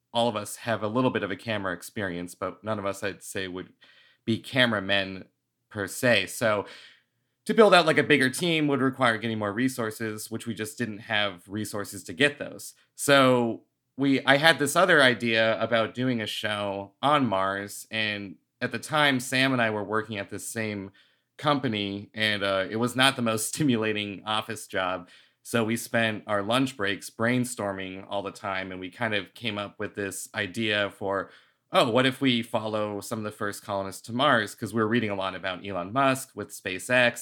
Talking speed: 200 wpm